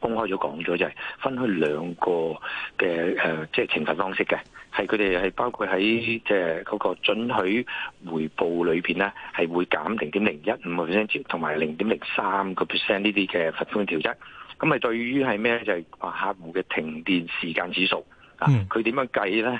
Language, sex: Chinese, male